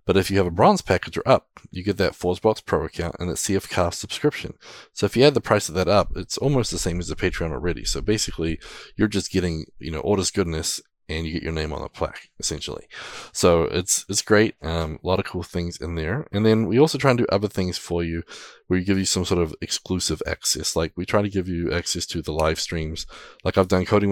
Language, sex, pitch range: English, male, 80-100 Hz